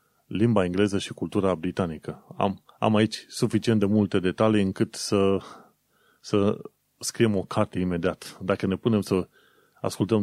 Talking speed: 140 wpm